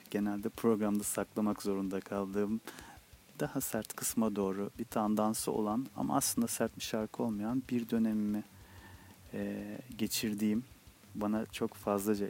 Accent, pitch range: native, 105-120 Hz